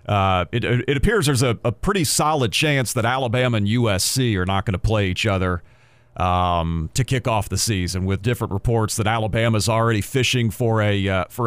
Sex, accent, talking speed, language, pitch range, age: male, American, 200 wpm, English, 105-125 Hz, 40-59